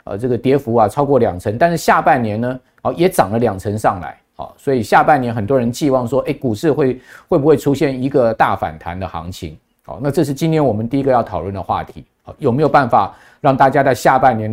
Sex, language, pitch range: male, Chinese, 120-150 Hz